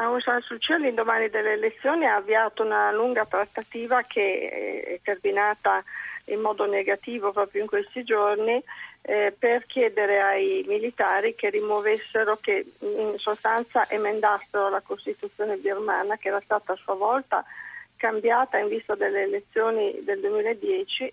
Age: 40-59